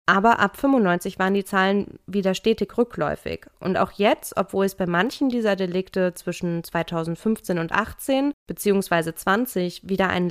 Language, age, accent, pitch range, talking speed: German, 20-39, German, 175-230 Hz, 150 wpm